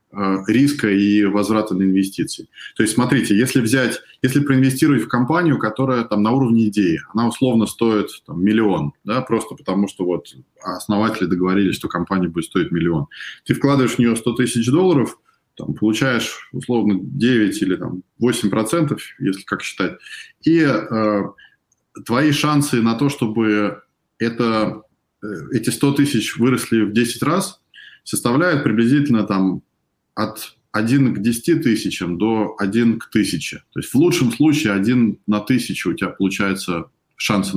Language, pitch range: Russian, 100-125 Hz